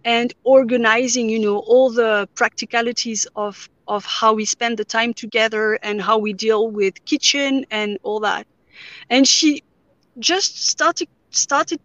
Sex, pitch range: female, 225-275 Hz